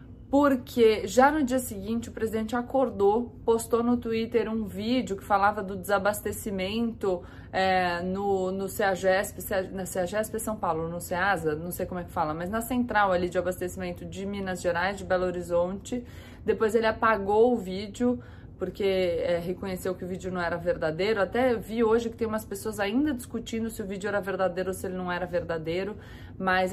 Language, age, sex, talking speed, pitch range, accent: Portuguese, 20-39, female, 185 wpm, 185-225 Hz, Brazilian